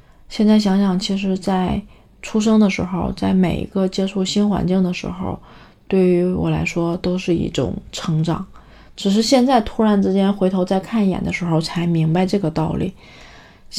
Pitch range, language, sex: 175-200 Hz, Chinese, female